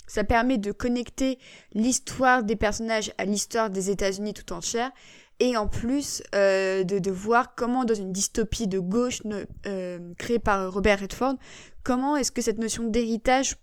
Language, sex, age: French, female, 20-39